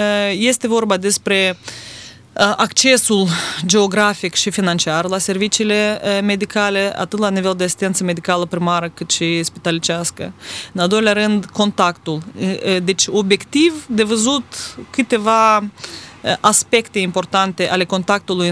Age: 20-39